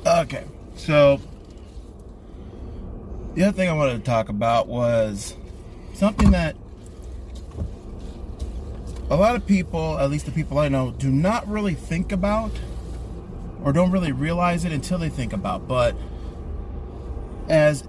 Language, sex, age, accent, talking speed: English, male, 30-49, American, 130 wpm